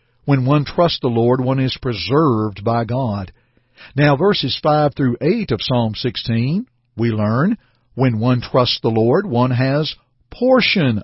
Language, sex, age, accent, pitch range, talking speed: English, male, 50-69, American, 125-165 Hz, 145 wpm